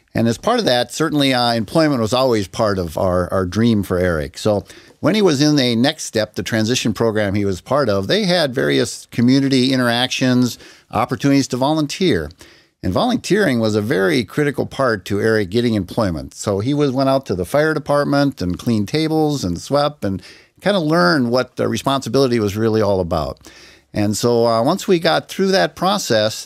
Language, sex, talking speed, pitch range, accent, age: English, male, 190 wpm, 100-135 Hz, American, 50-69